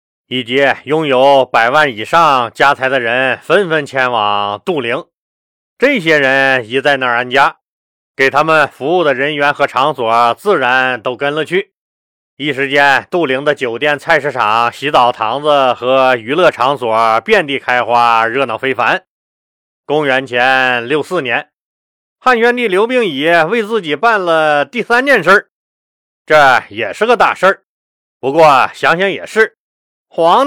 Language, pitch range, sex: Chinese, 125-160 Hz, male